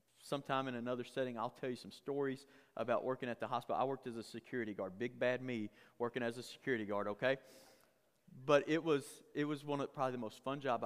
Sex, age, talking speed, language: male, 30-49, 225 wpm, English